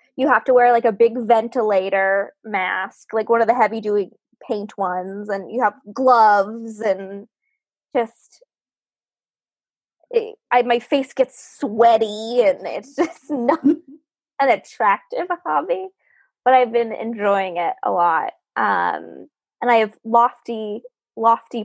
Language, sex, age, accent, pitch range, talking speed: English, female, 20-39, American, 210-290 Hz, 130 wpm